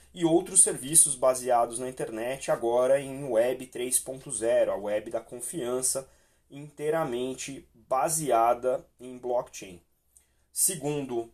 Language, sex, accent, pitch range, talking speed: Portuguese, male, Brazilian, 120-165 Hz, 100 wpm